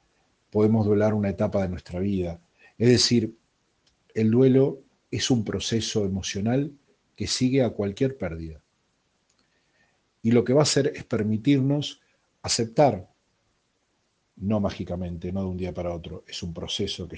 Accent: Argentinian